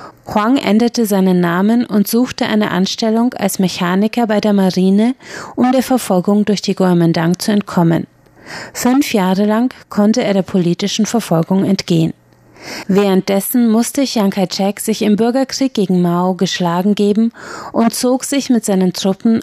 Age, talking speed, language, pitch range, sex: 30-49, 145 wpm, German, 190-235 Hz, female